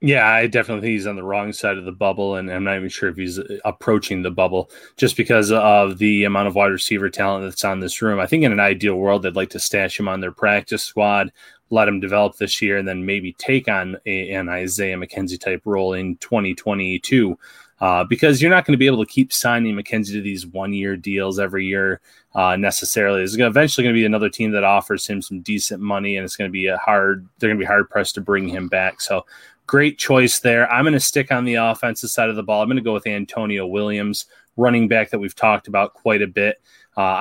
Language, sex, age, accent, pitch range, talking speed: English, male, 20-39, American, 100-120 Hz, 245 wpm